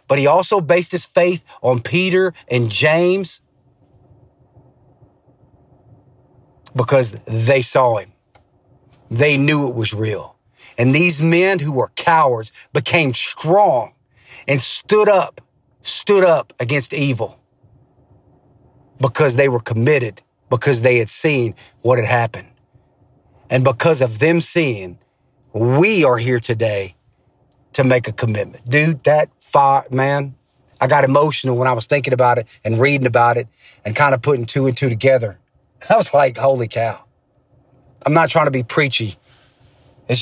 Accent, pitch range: American, 120-140 Hz